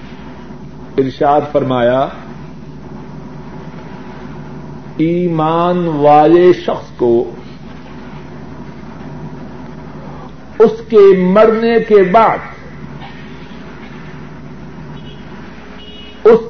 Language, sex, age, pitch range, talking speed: Urdu, male, 60-79, 145-215 Hz, 45 wpm